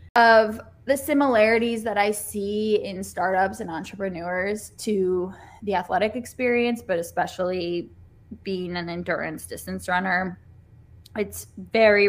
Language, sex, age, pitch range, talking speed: English, female, 10-29, 180-210 Hz, 115 wpm